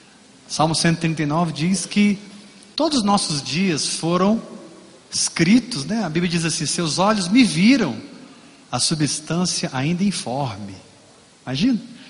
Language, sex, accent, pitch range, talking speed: Portuguese, male, Brazilian, 150-215 Hz, 120 wpm